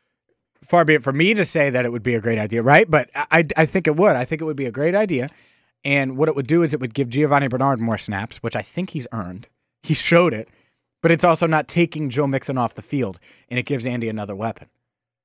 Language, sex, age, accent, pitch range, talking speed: English, male, 30-49, American, 125-160 Hz, 260 wpm